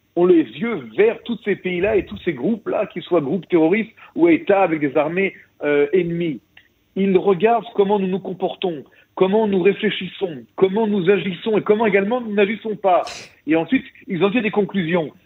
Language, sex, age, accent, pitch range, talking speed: French, male, 50-69, French, 170-225 Hz, 185 wpm